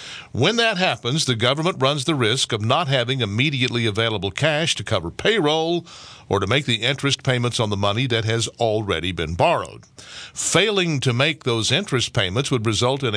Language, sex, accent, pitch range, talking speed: English, male, American, 110-140 Hz, 180 wpm